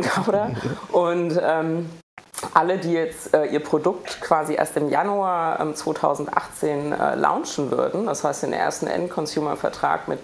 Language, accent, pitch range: German, German, 140-165 Hz